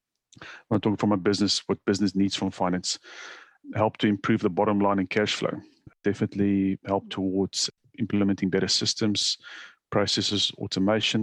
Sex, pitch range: male, 100-115 Hz